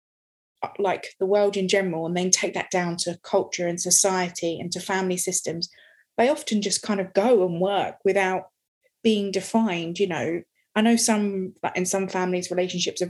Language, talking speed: English, 180 wpm